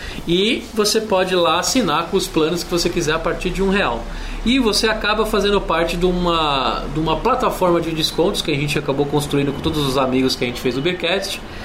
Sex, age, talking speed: male, 20-39, 225 wpm